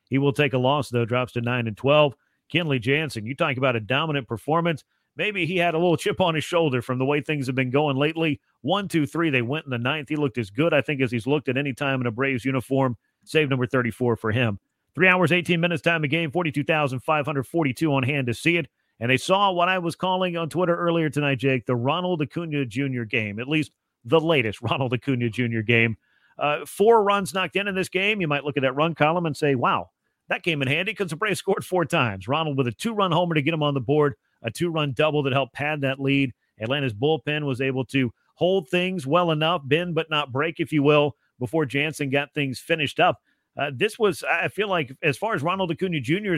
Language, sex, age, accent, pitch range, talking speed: English, male, 40-59, American, 130-170 Hz, 240 wpm